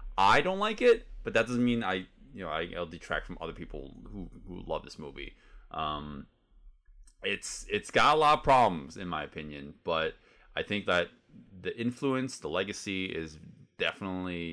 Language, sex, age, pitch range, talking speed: English, male, 20-39, 80-120 Hz, 175 wpm